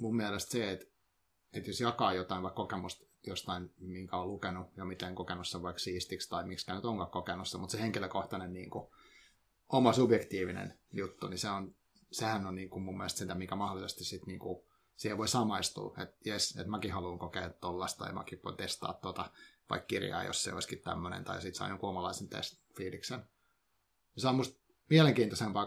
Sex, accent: male, native